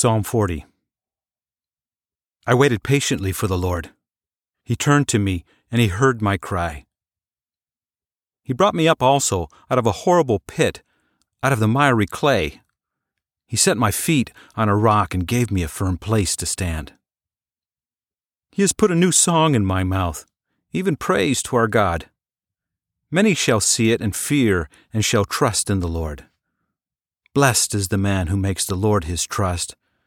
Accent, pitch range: American, 95-130 Hz